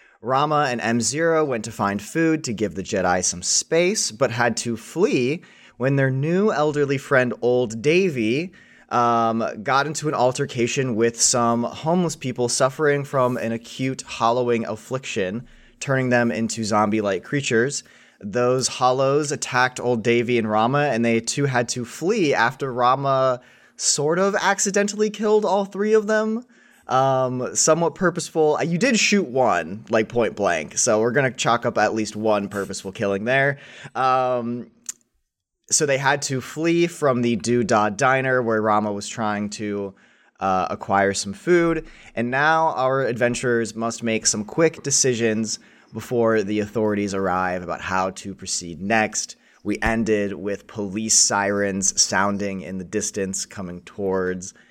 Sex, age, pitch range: male, 20-39, 105-140 Hz